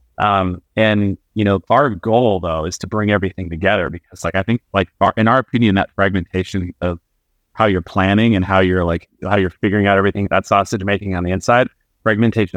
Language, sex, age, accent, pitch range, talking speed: English, male, 30-49, American, 90-105 Hz, 200 wpm